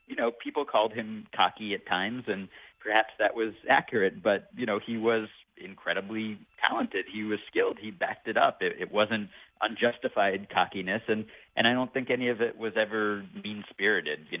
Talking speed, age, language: 185 wpm, 40-59, English